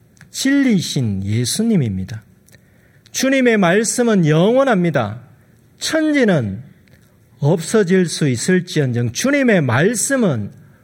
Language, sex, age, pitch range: Korean, male, 40-59, 125-200 Hz